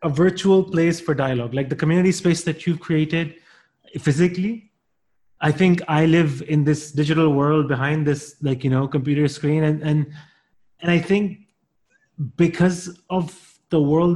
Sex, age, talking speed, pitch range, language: male, 30-49, 155 wpm, 135-165 Hz, English